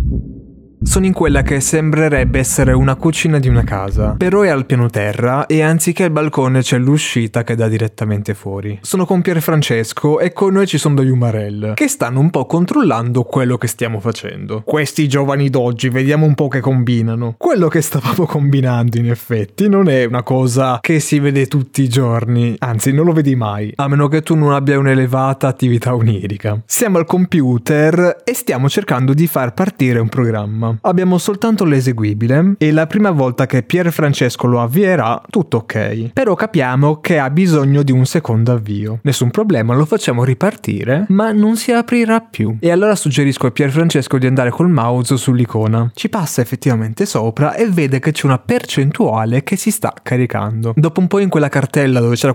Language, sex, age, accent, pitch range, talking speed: Italian, male, 20-39, native, 120-165 Hz, 180 wpm